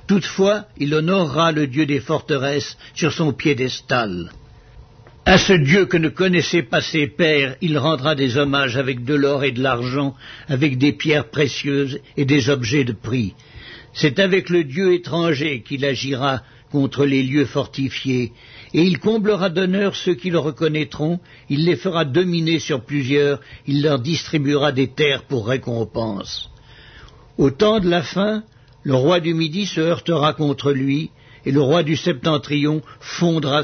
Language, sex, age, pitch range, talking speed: French, male, 60-79, 135-165 Hz, 160 wpm